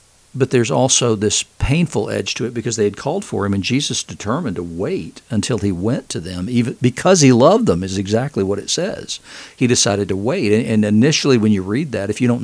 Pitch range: 100-125 Hz